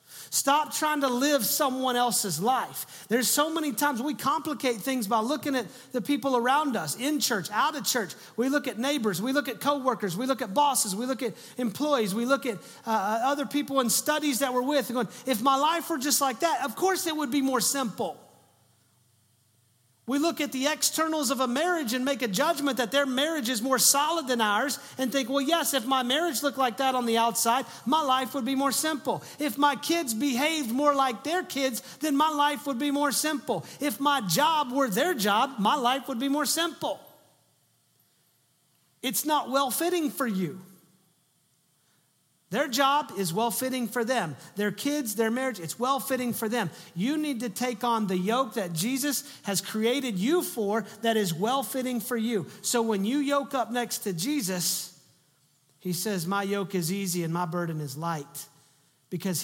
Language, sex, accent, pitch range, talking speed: English, male, American, 200-285 Hz, 195 wpm